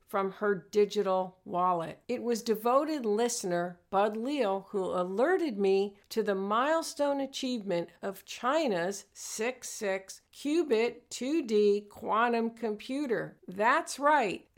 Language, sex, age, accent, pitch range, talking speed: English, female, 50-69, American, 200-265 Hz, 105 wpm